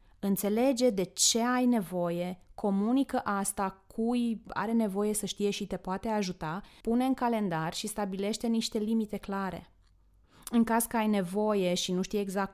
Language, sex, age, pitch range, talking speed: Romanian, female, 20-39, 190-240 Hz, 160 wpm